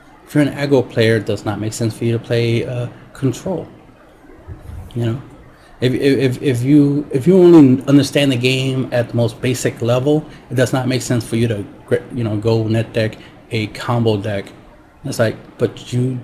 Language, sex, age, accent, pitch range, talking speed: English, male, 30-49, American, 110-130 Hz, 195 wpm